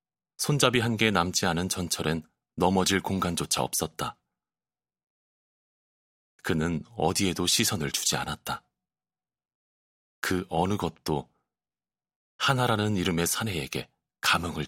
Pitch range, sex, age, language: 85-110 Hz, male, 30-49, Korean